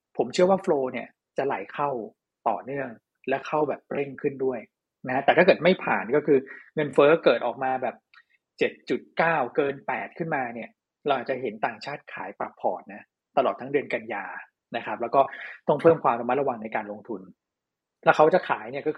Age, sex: 20-39, male